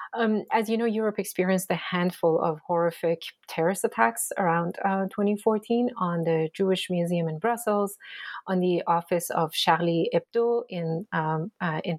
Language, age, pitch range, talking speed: English, 30-49, 180-230 Hz, 155 wpm